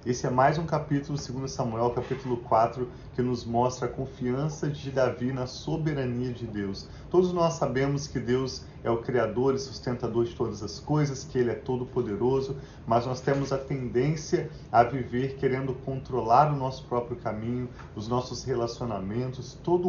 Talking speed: 165 wpm